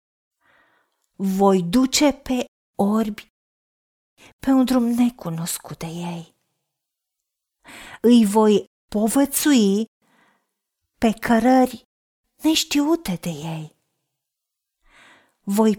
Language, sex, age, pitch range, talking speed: Romanian, female, 40-59, 185-265 Hz, 70 wpm